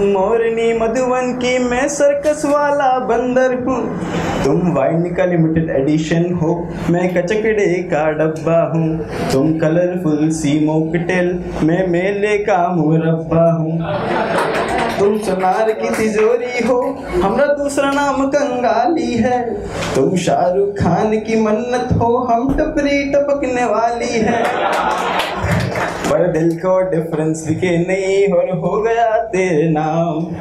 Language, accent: Hindi, native